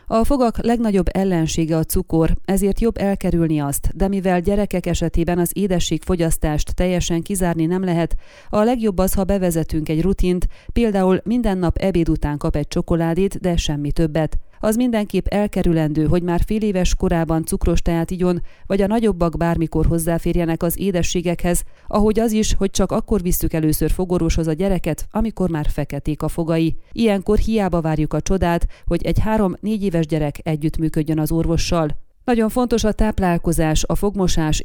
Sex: female